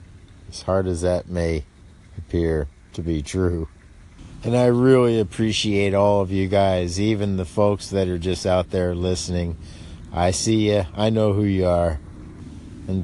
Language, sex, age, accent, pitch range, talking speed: English, male, 50-69, American, 85-110 Hz, 160 wpm